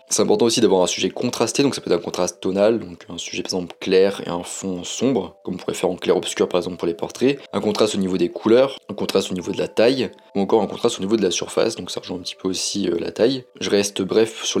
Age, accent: 20-39, French